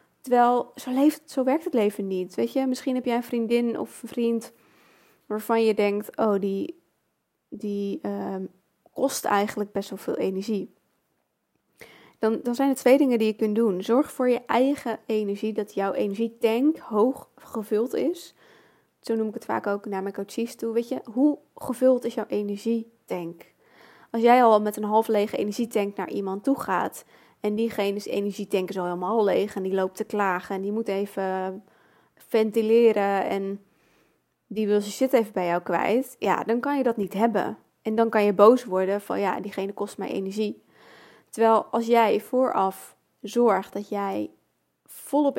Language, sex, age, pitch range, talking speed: Dutch, female, 20-39, 200-235 Hz, 180 wpm